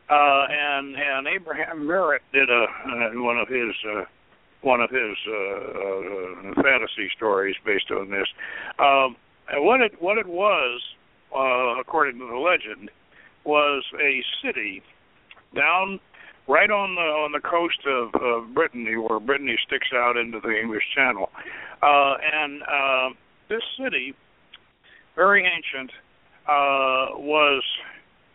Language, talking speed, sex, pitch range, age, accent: English, 140 wpm, male, 135-170 Hz, 60-79, American